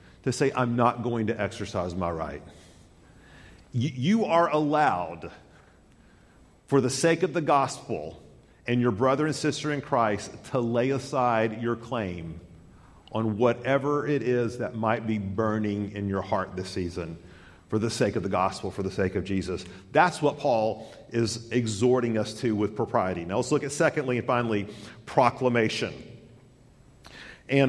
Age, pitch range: 40-59, 110-145 Hz